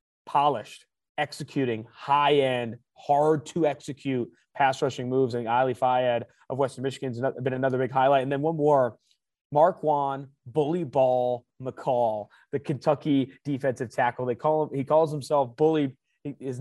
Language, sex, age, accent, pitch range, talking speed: English, male, 20-39, American, 130-155 Hz, 135 wpm